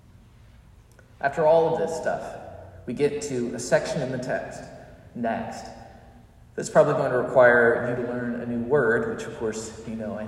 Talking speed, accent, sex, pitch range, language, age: 180 wpm, American, male, 110-160 Hz, English, 40-59